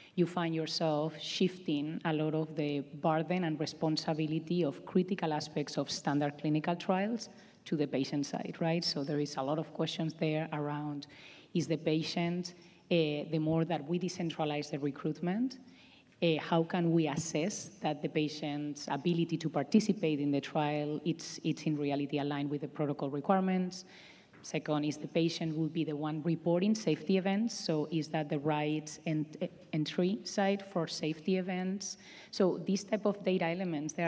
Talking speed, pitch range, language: 165 wpm, 150-170 Hz, English